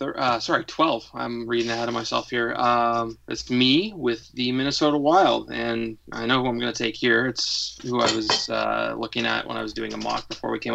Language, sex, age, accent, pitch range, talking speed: English, male, 20-39, American, 110-125 Hz, 230 wpm